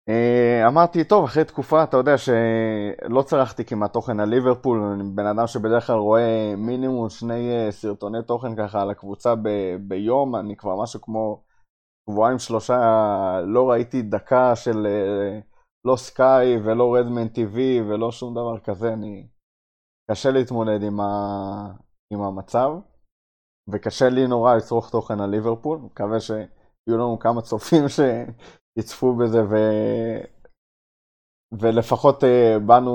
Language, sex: Hebrew, male